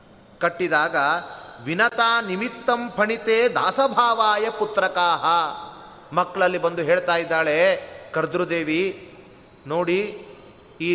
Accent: native